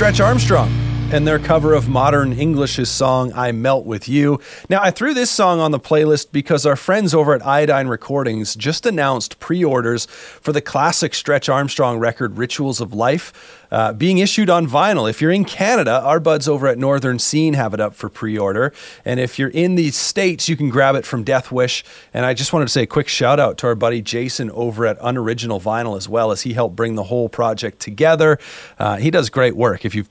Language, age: English, 30-49